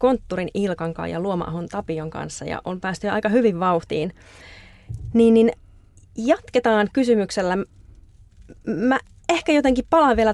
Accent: native